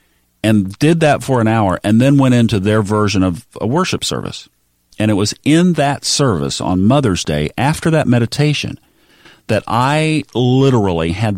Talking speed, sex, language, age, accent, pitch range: 170 wpm, male, English, 40-59, American, 95-130 Hz